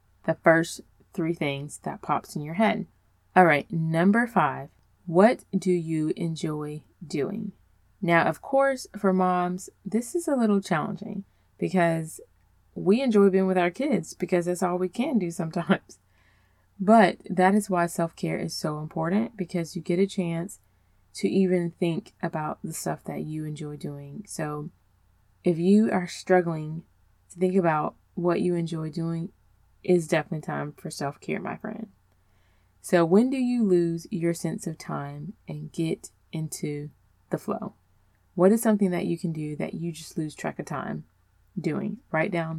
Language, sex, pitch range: English, female, 150-190 Hz